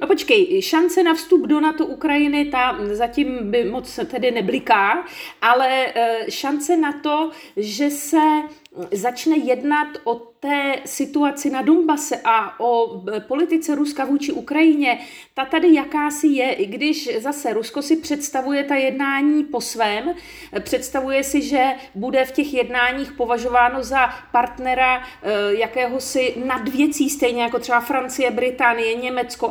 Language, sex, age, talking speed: Czech, female, 40-59, 130 wpm